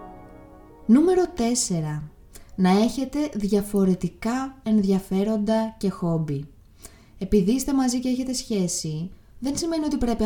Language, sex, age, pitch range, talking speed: Greek, female, 20-39, 170-220 Hz, 105 wpm